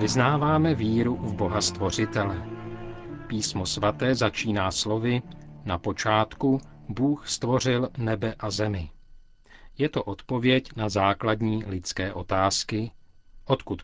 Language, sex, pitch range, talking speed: Czech, male, 100-125 Hz, 105 wpm